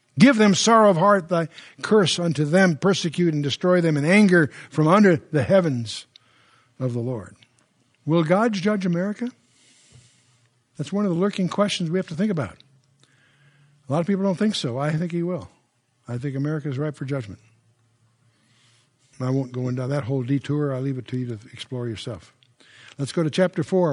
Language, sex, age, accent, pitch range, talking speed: English, male, 60-79, American, 130-180 Hz, 190 wpm